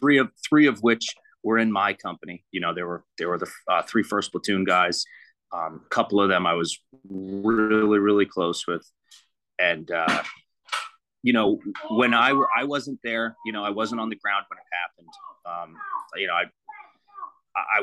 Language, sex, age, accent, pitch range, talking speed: English, male, 30-49, American, 95-130 Hz, 190 wpm